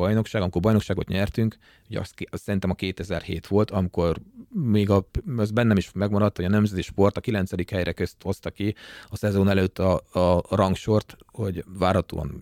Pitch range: 90-110 Hz